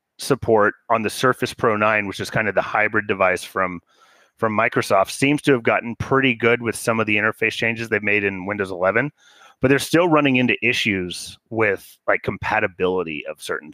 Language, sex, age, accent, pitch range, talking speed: English, male, 30-49, American, 105-135 Hz, 190 wpm